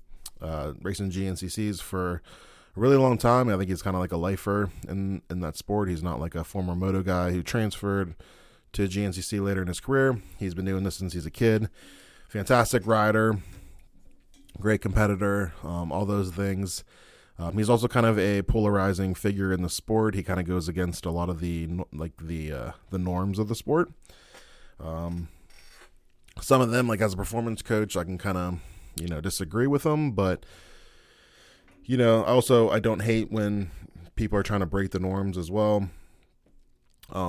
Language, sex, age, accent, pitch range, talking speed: English, male, 20-39, American, 85-105 Hz, 180 wpm